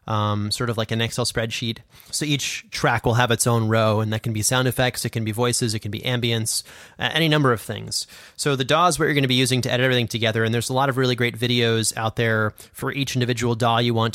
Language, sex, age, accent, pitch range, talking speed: English, male, 30-49, American, 110-130 Hz, 270 wpm